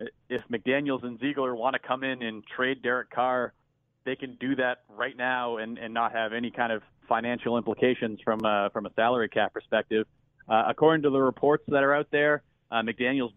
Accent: American